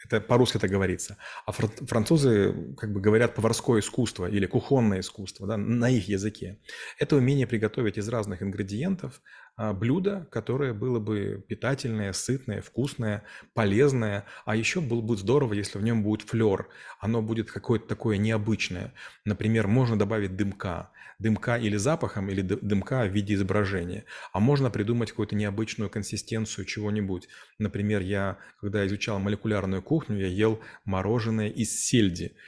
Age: 30-49